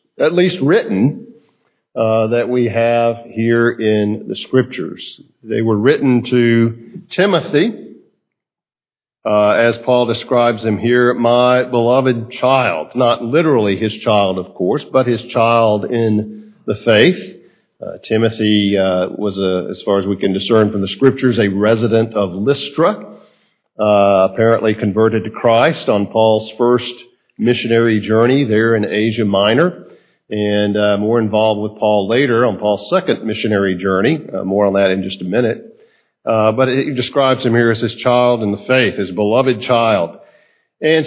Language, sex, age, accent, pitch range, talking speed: English, male, 50-69, American, 110-130 Hz, 155 wpm